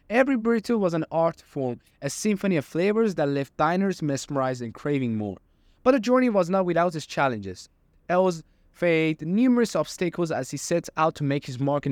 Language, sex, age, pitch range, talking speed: English, male, 20-39, 130-180 Hz, 190 wpm